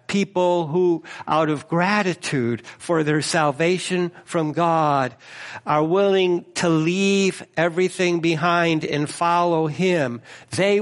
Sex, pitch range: male, 150-195 Hz